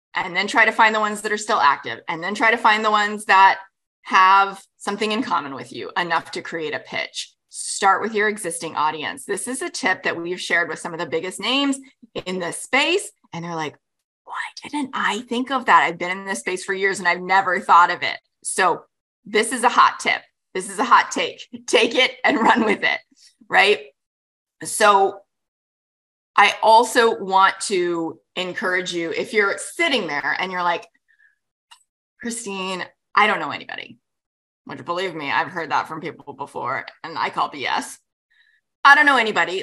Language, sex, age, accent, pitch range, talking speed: English, female, 20-39, American, 190-260 Hz, 190 wpm